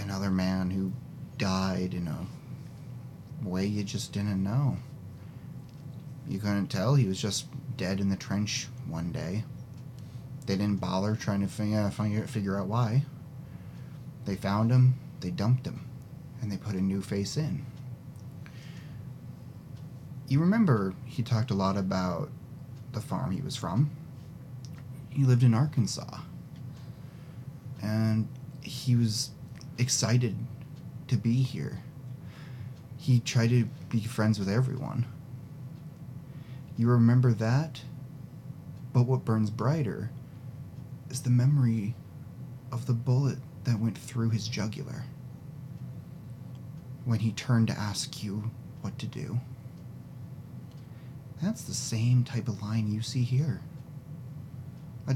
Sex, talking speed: male, 120 wpm